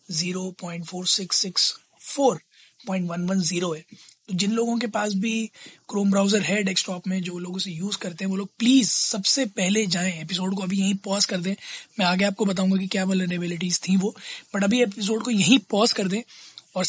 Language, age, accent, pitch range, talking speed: Hindi, 20-39, native, 185-220 Hz, 180 wpm